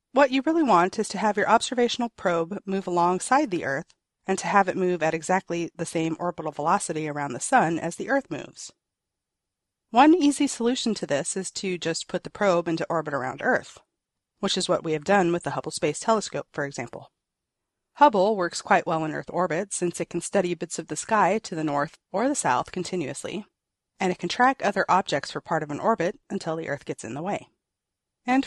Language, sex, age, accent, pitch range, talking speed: English, female, 30-49, American, 170-225 Hz, 215 wpm